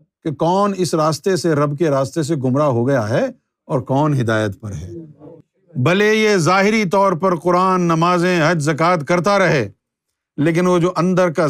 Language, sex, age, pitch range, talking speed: Urdu, male, 50-69, 125-180 Hz, 175 wpm